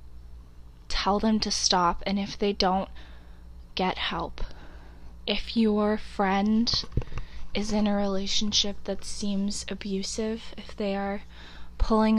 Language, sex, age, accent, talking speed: English, female, 10-29, American, 120 wpm